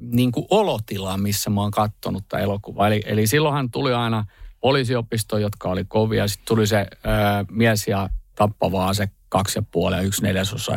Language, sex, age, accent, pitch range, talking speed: Finnish, male, 50-69, native, 100-125 Hz, 180 wpm